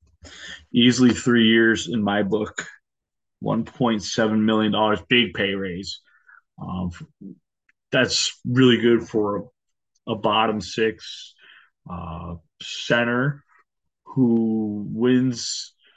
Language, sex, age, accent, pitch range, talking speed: English, male, 30-49, American, 110-130 Hz, 85 wpm